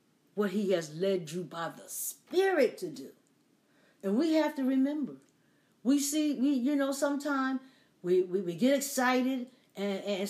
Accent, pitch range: American, 200-275 Hz